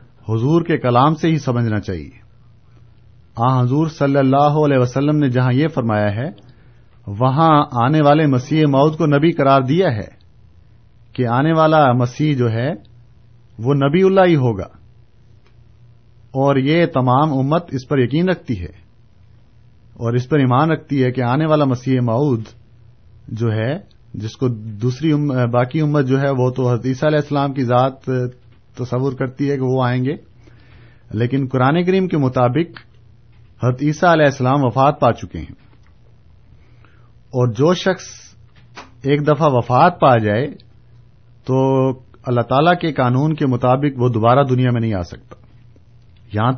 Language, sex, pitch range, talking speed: Urdu, male, 115-140 Hz, 155 wpm